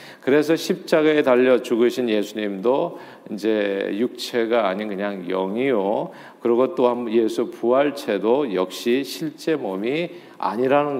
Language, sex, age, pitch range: Korean, male, 40-59, 110-155 Hz